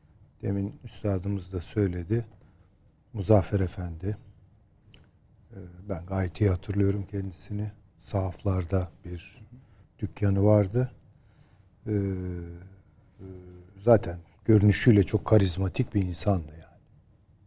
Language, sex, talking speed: Turkish, male, 70 wpm